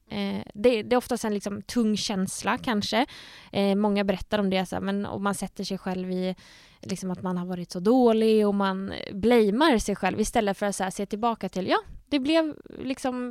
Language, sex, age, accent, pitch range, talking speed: Swedish, female, 20-39, Norwegian, 195-235 Hz, 185 wpm